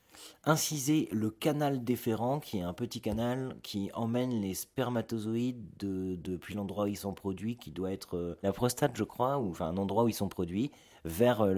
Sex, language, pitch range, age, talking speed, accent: male, French, 85-115 Hz, 30-49, 200 wpm, French